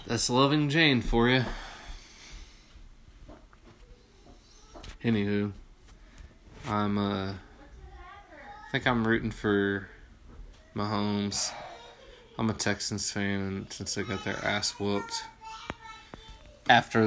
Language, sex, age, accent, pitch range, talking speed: English, male, 20-39, American, 100-115 Hz, 90 wpm